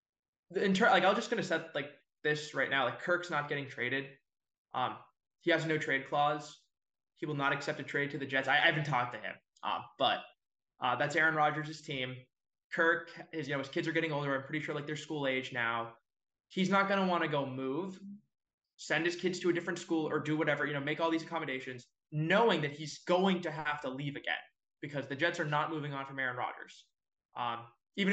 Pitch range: 135-165 Hz